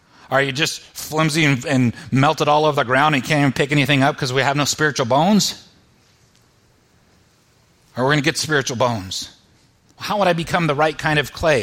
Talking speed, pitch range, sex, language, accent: 205 wpm, 115-165 Hz, male, English, American